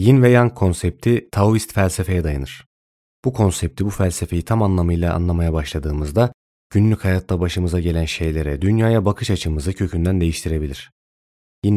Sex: male